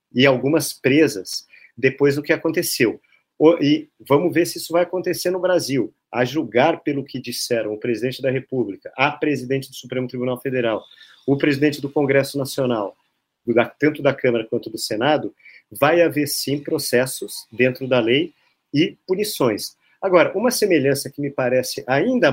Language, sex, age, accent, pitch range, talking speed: Portuguese, male, 40-59, Brazilian, 130-175 Hz, 155 wpm